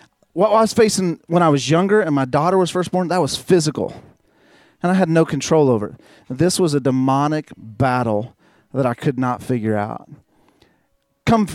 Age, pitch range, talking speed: 30-49, 135-170 Hz, 185 wpm